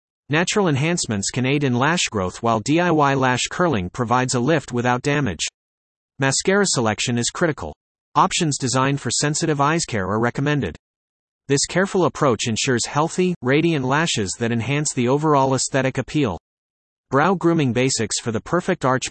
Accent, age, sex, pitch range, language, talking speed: American, 40-59, male, 115-150 Hz, English, 150 wpm